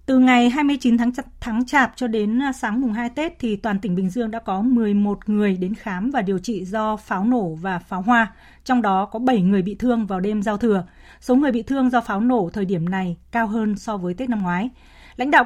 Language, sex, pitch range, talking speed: Vietnamese, female, 200-250 Hz, 240 wpm